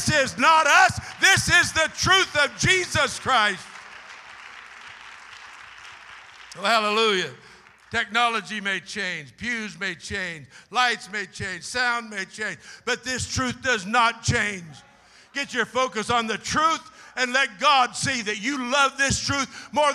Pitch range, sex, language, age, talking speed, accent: 235-335 Hz, male, English, 60-79, 140 wpm, American